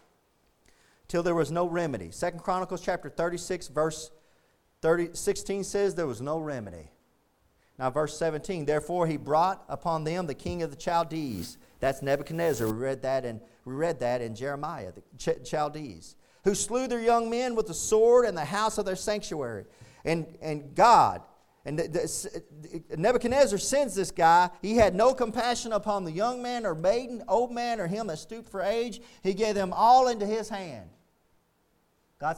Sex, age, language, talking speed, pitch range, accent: male, 40-59, English, 175 wpm, 145-200 Hz, American